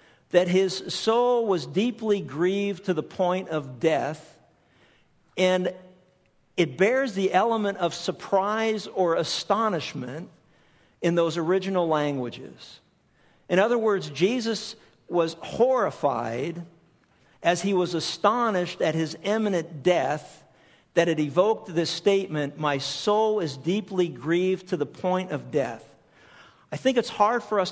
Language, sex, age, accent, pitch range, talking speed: English, male, 50-69, American, 160-195 Hz, 130 wpm